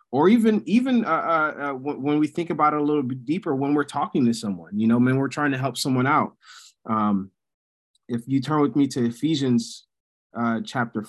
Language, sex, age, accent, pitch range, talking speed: English, male, 20-39, American, 110-145 Hz, 205 wpm